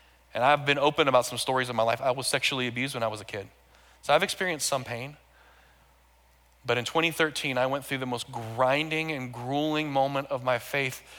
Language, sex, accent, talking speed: English, male, American, 210 wpm